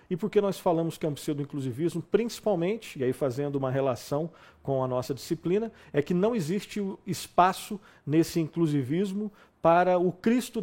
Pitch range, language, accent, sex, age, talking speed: 140-175 Hz, Portuguese, Brazilian, male, 50-69, 160 wpm